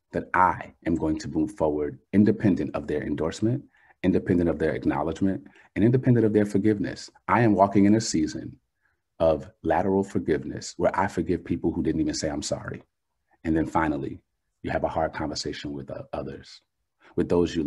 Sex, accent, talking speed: male, American, 180 wpm